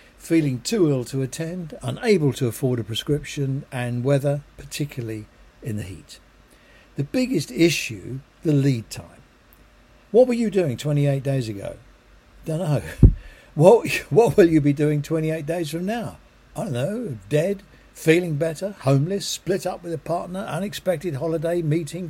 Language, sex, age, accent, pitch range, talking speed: English, male, 60-79, British, 120-160 Hz, 150 wpm